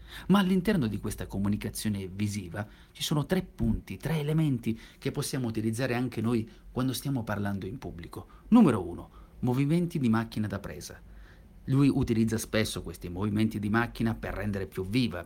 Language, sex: Italian, male